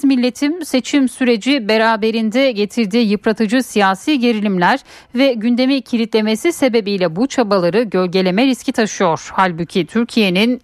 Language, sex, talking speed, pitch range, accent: Turkish, female, 105 wpm, 180-270 Hz, native